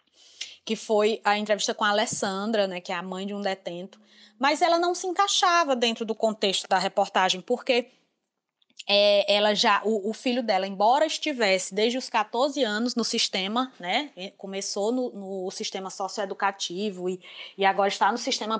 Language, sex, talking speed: English, female, 170 wpm